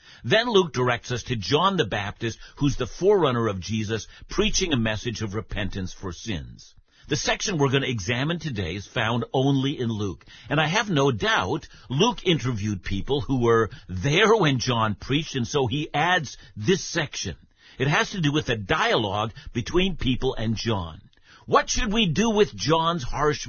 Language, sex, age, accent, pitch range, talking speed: English, male, 60-79, American, 110-170 Hz, 180 wpm